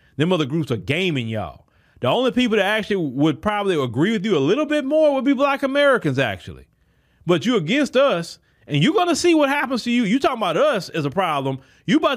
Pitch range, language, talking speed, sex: 160-240 Hz, English, 230 wpm, male